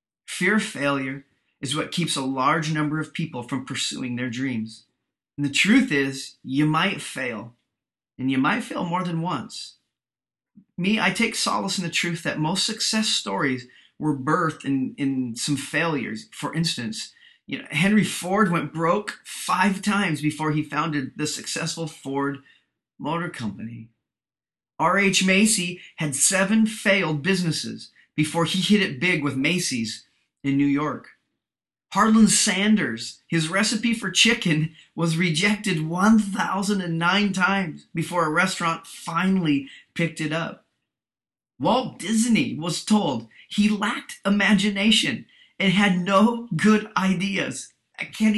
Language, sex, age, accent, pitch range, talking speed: English, male, 30-49, American, 150-205 Hz, 135 wpm